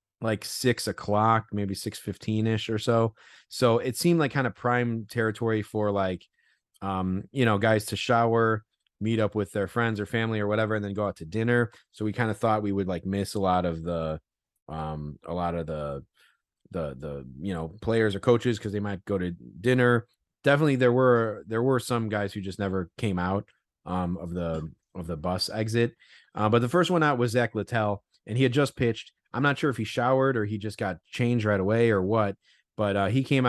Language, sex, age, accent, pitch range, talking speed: English, male, 30-49, American, 100-120 Hz, 220 wpm